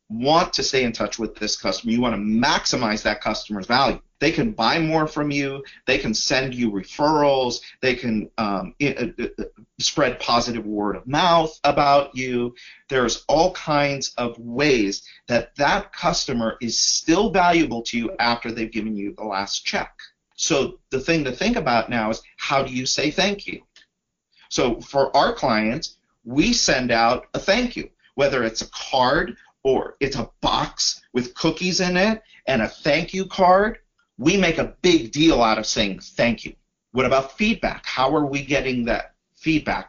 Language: English